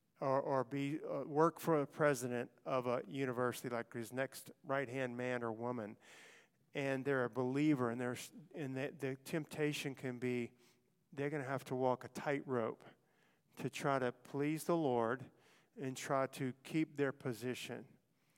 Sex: male